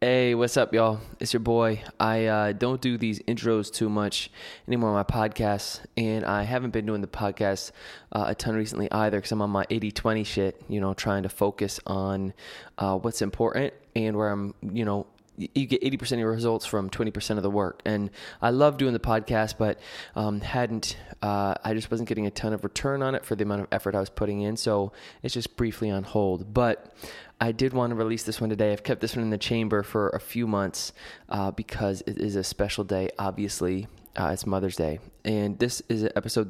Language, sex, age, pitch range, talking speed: English, male, 20-39, 100-115 Hz, 220 wpm